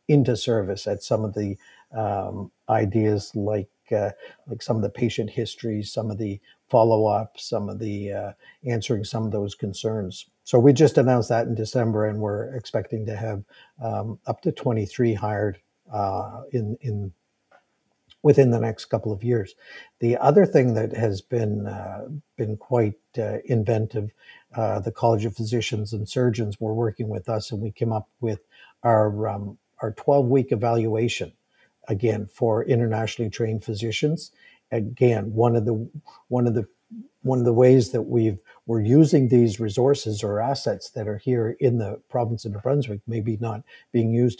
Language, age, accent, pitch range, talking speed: English, 50-69, American, 110-120 Hz, 170 wpm